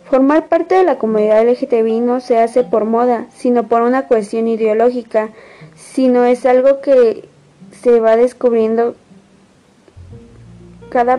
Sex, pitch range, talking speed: female, 215-255 Hz, 130 wpm